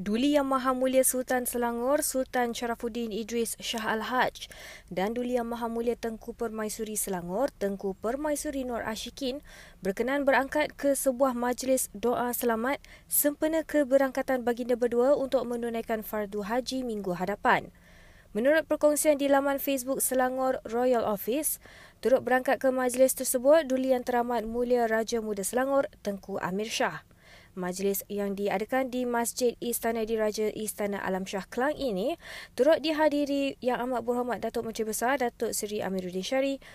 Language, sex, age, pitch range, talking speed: Malay, female, 20-39, 220-265 Hz, 145 wpm